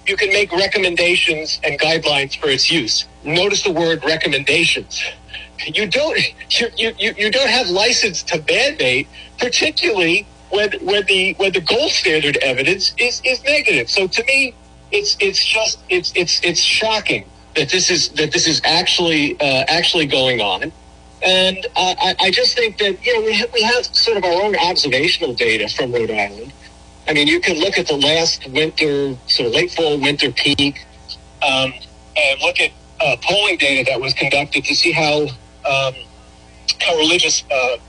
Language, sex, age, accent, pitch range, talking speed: English, male, 50-69, American, 145-215 Hz, 175 wpm